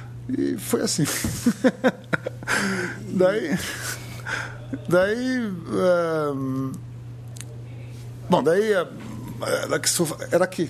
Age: 60-79